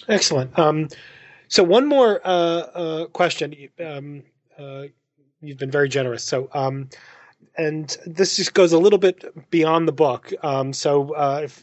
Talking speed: 155 wpm